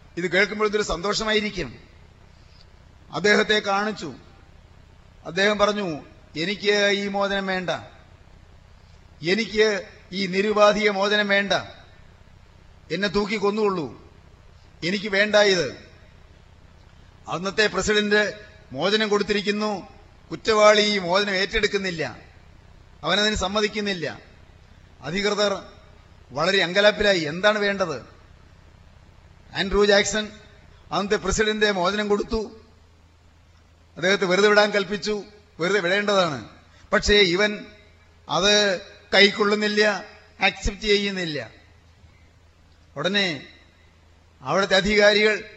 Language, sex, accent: Malayalam, male, native